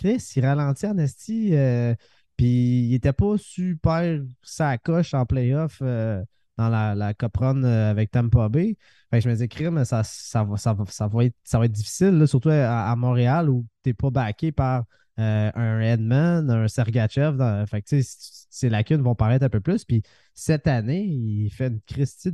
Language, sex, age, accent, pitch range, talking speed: French, male, 20-39, Canadian, 120-150 Hz, 190 wpm